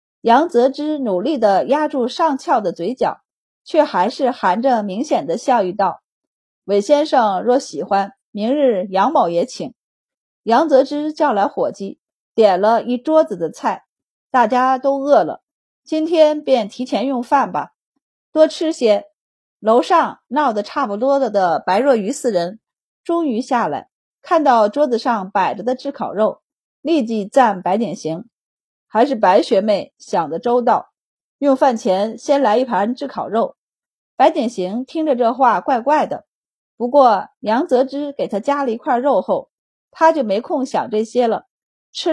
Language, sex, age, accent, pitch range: Chinese, female, 30-49, native, 225-295 Hz